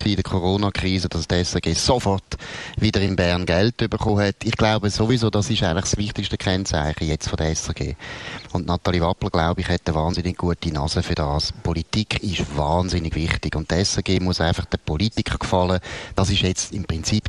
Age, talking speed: 30-49, 190 wpm